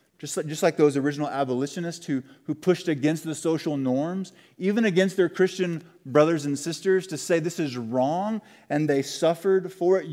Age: 30-49